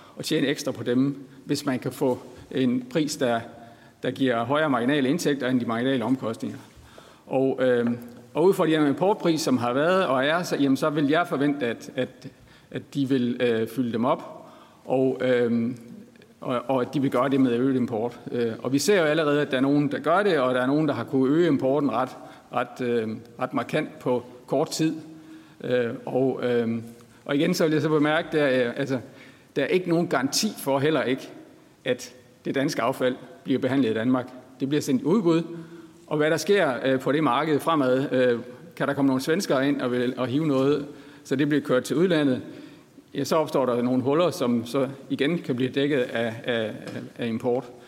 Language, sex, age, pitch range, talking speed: Danish, male, 50-69, 125-145 Hz, 200 wpm